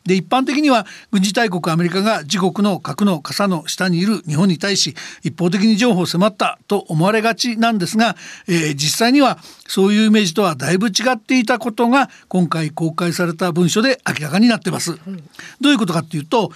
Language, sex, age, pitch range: Japanese, male, 60-79, 170-230 Hz